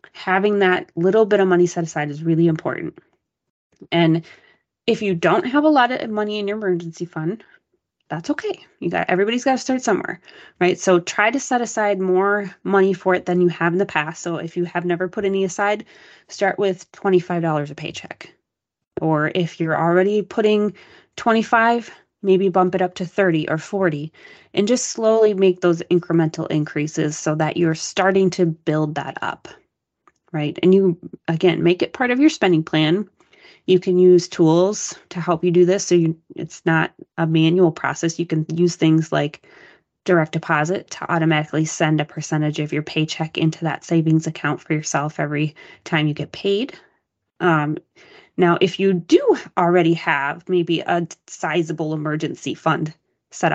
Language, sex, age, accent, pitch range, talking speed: English, female, 20-39, American, 160-195 Hz, 175 wpm